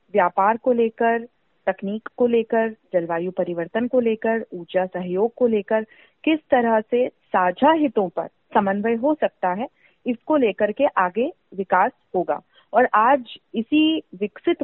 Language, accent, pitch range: Hindi, native, 195-265 Hz